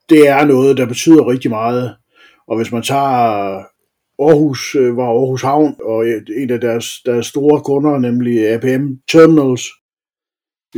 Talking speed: 145 wpm